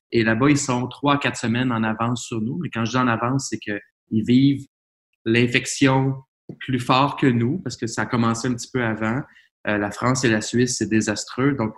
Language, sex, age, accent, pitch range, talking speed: French, male, 20-39, Canadian, 115-130 Hz, 220 wpm